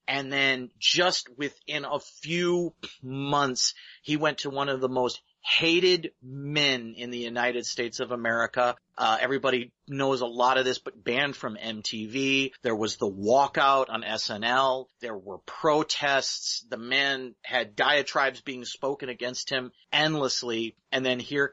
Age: 40-59